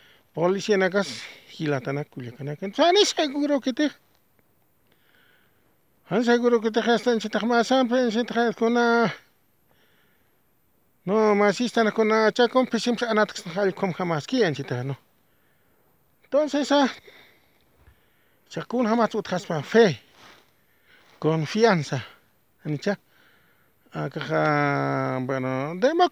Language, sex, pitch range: English, male, 170-240 Hz